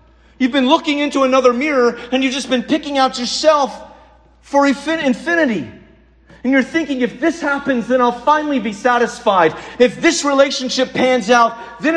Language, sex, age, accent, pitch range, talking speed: English, male, 40-59, American, 210-295 Hz, 160 wpm